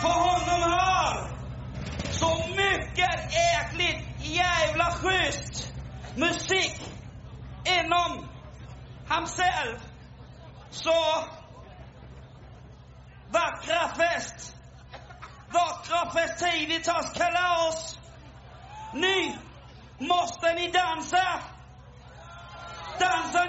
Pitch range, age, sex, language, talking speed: 320-355 Hz, 40-59, male, English, 65 wpm